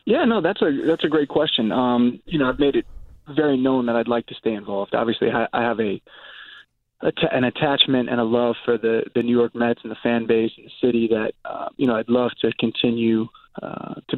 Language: English